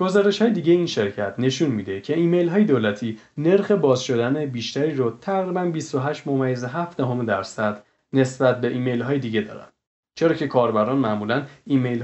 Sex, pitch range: male, 115-150 Hz